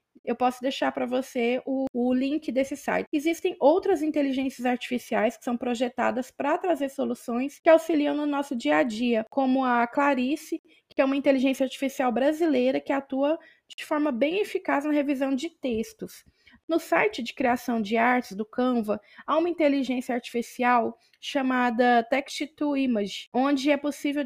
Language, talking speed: Portuguese, 160 wpm